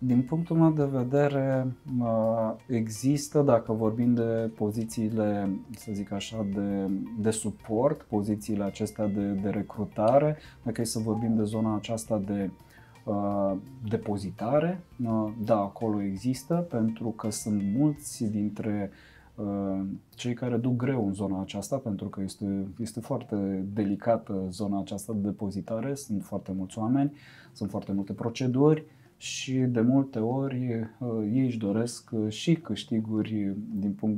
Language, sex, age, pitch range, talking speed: Romanian, male, 20-39, 105-130 Hz, 130 wpm